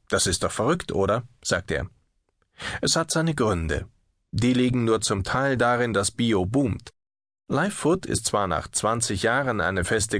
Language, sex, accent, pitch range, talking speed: German, male, German, 100-130 Hz, 170 wpm